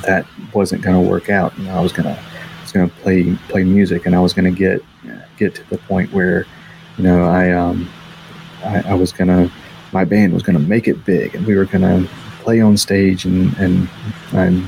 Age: 30-49